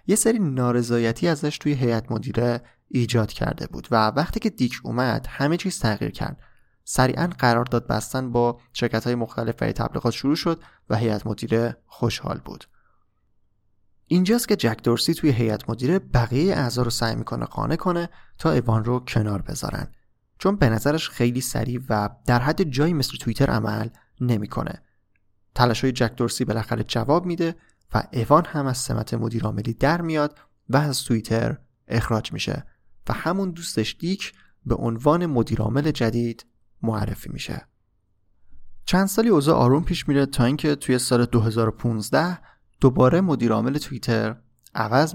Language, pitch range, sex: Persian, 115-150 Hz, male